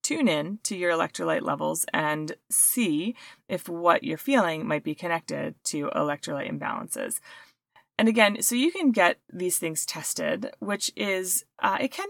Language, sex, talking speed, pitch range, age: English, female, 160 wpm, 155-225 Hz, 30-49